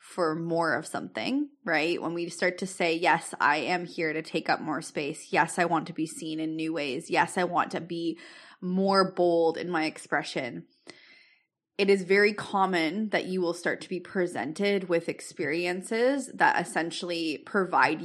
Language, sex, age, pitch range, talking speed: English, female, 20-39, 165-215 Hz, 180 wpm